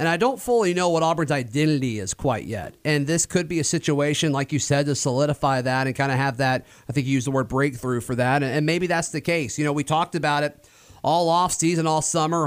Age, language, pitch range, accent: 30-49, English, 135-165 Hz, American